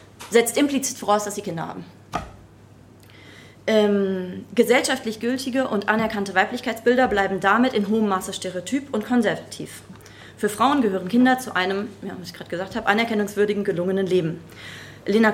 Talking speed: 140 wpm